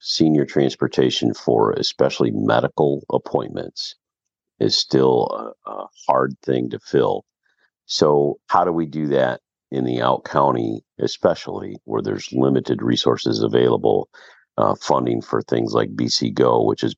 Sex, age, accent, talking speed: male, 50-69, American, 140 wpm